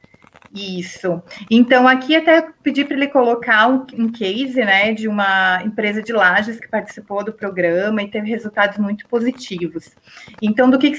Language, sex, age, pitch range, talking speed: Portuguese, female, 30-49, 210-255 Hz, 160 wpm